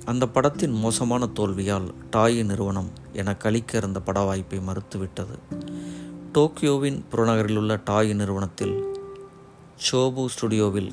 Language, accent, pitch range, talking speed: Tamil, native, 95-120 Hz, 100 wpm